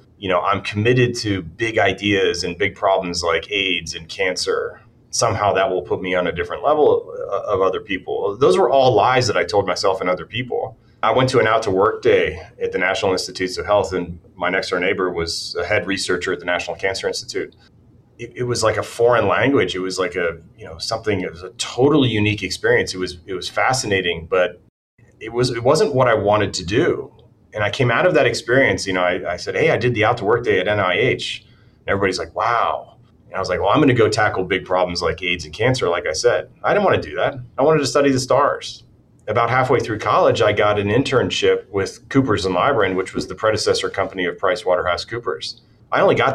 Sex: male